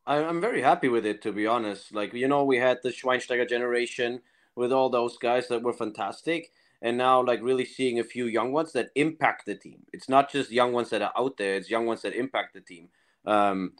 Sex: male